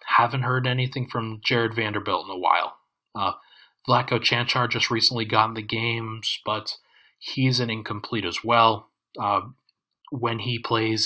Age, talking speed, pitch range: 30-49, 150 wpm, 110-130 Hz